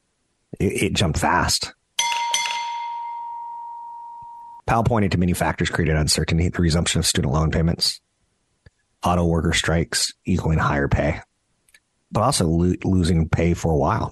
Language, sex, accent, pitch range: English, male, American, 80-100 Hz